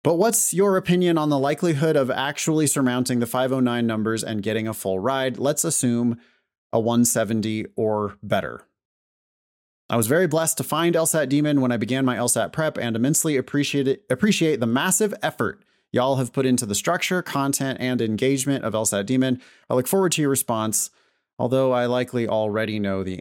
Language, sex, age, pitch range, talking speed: English, male, 30-49, 105-140 Hz, 180 wpm